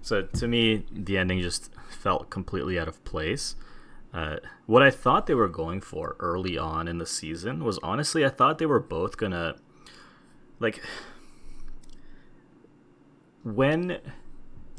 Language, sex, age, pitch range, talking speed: English, male, 30-49, 85-110 Hz, 140 wpm